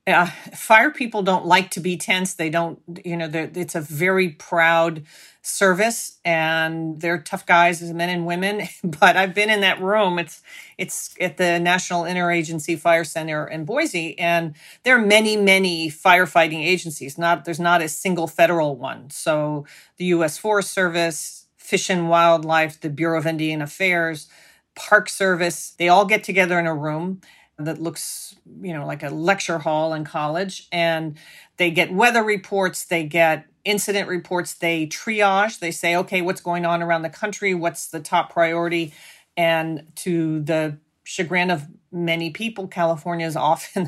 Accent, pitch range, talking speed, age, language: American, 160-185 Hz, 165 wpm, 40-59, English